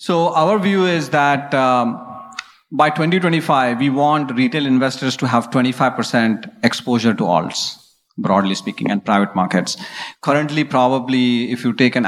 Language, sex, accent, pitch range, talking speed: English, male, Indian, 120-145 Hz, 145 wpm